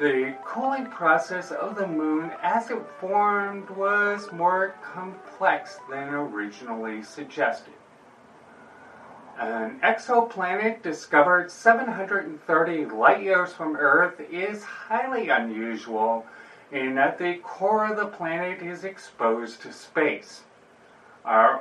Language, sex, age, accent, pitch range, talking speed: English, male, 40-59, American, 140-200 Hz, 105 wpm